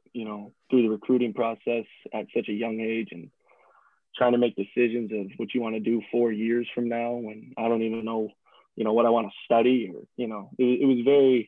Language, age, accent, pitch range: English, 20-39, American, 110-120 Hz